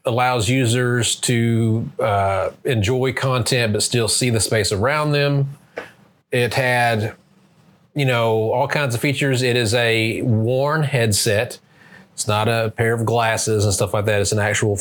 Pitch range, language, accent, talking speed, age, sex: 105-125 Hz, English, American, 160 wpm, 30-49, male